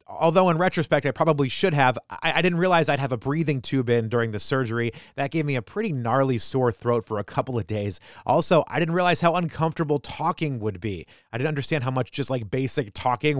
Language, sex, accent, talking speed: English, male, American, 225 wpm